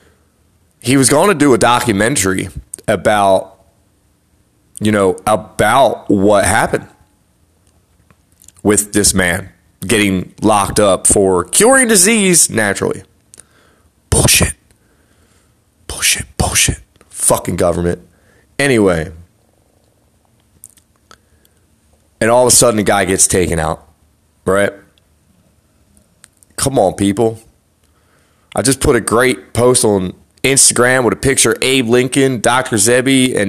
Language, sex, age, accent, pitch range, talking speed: English, male, 30-49, American, 90-115 Hz, 110 wpm